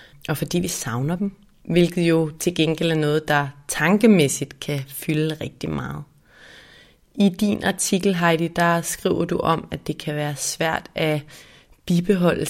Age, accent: 30-49, native